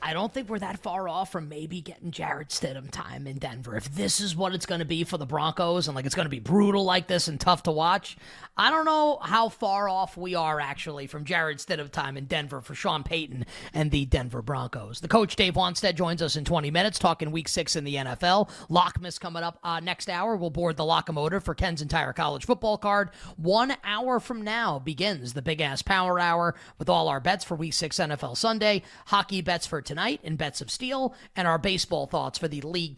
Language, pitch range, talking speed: English, 150-195 Hz, 225 wpm